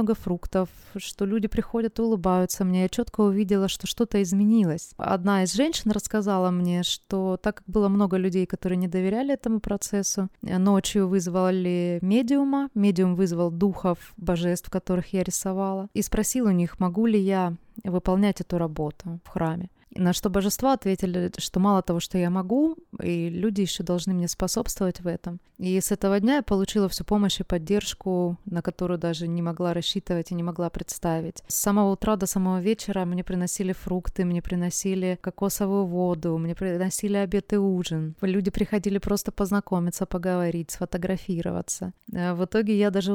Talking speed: 165 wpm